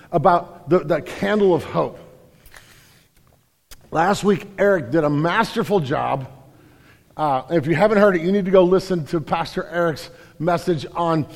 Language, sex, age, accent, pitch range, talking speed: English, male, 50-69, American, 160-200 Hz, 155 wpm